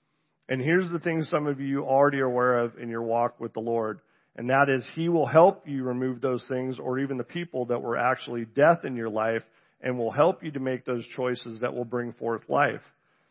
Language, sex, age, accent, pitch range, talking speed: English, male, 40-59, American, 120-150 Hz, 235 wpm